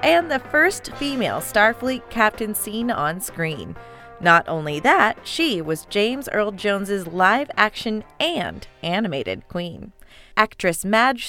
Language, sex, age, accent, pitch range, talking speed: English, female, 30-49, American, 175-245 Hz, 130 wpm